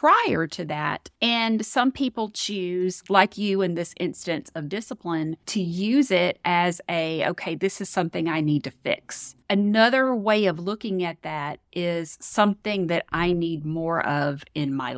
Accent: American